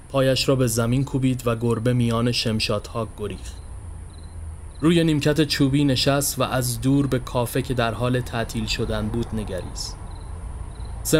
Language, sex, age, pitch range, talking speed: Persian, male, 30-49, 95-125 Hz, 150 wpm